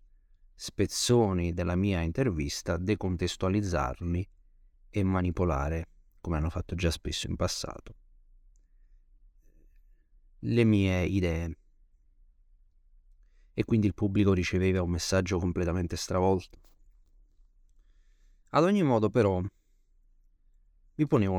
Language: Italian